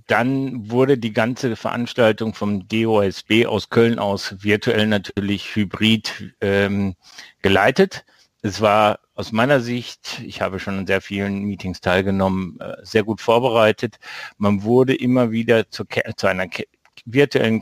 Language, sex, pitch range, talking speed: German, male, 100-120 Hz, 135 wpm